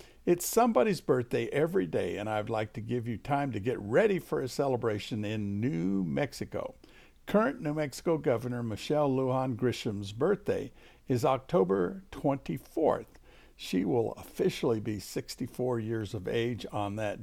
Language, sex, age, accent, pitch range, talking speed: English, male, 60-79, American, 105-135 Hz, 145 wpm